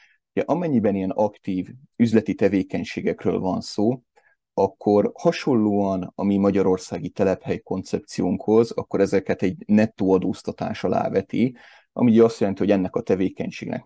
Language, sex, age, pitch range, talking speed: Hungarian, male, 30-49, 95-115 Hz, 125 wpm